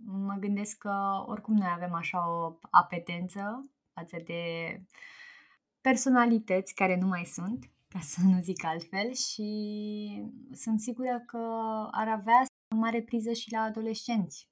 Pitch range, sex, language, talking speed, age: 175-215 Hz, female, Romanian, 135 wpm, 20-39